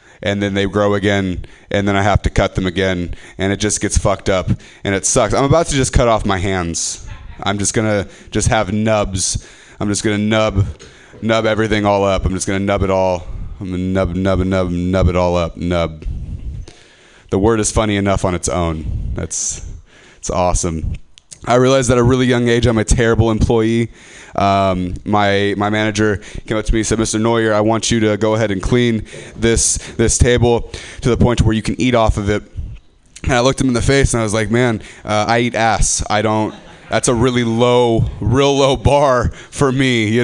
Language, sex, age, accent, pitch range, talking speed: English, male, 20-39, American, 95-115 Hz, 215 wpm